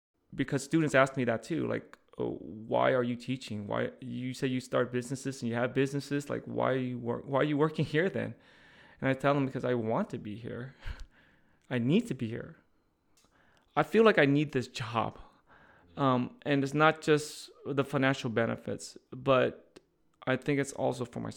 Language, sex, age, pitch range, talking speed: English, male, 20-39, 115-140 Hz, 195 wpm